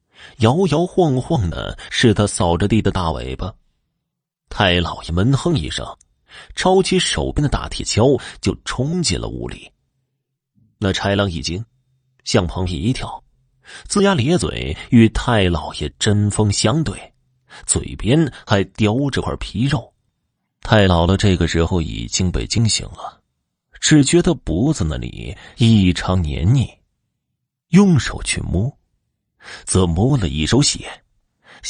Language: Chinese